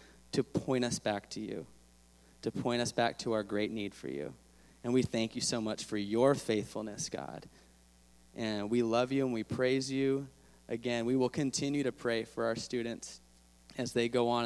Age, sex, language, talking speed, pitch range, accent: 30-49, male, English, 195 wpm, 100-130 Hz, American